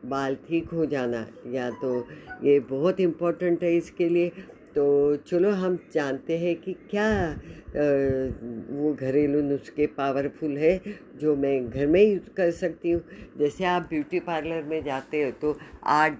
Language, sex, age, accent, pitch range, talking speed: Hindi, female, 50-69, native, 135-170 Hz, 155 wpm